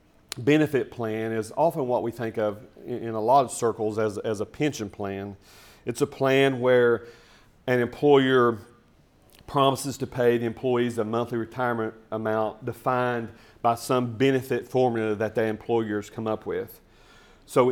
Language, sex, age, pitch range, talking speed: English, male, 40-59, 110-125 Hz, 150 wpm